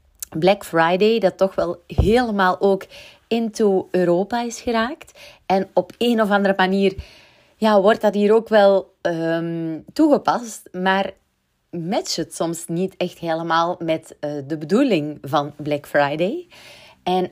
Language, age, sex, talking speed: Dutch, 30-49, female, 130 wpm